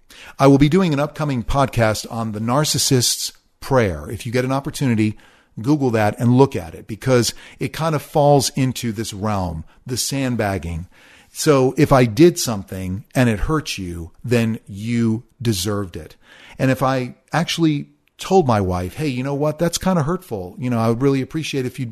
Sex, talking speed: male, 185 wpm